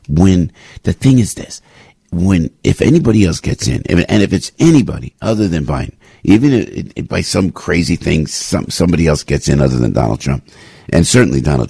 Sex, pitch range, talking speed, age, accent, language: male, 85-115 Hz, 190 wpm, 50-69, American, English